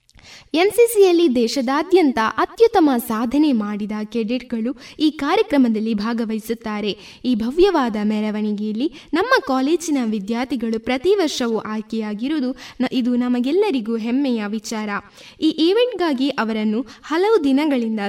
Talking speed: 85 wpm